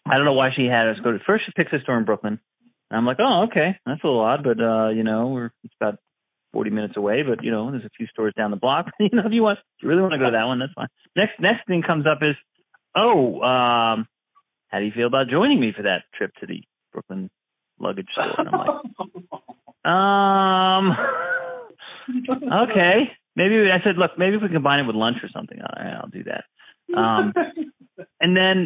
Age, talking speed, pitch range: 30-49, 230 wpm, 120-195 Hz